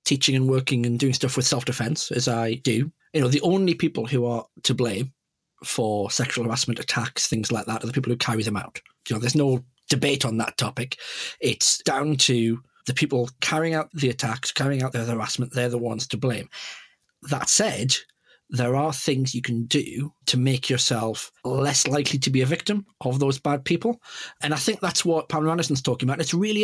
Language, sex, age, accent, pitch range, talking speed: English, male, 40-59, British, 125-150 Hz, 210 wpm